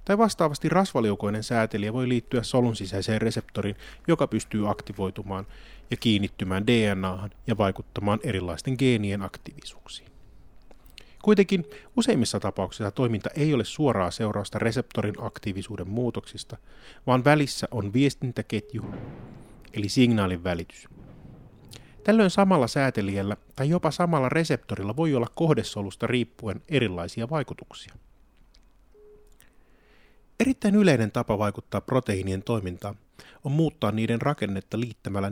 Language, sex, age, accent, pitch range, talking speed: Finnish, male, 30-49, native, 100-135 Hz, 105 wpm